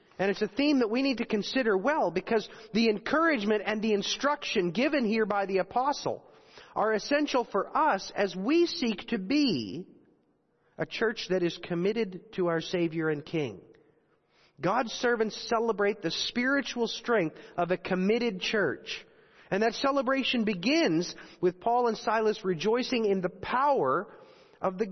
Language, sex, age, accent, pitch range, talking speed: English, male, 40-59, American, 180-240 Hz, 155 wpm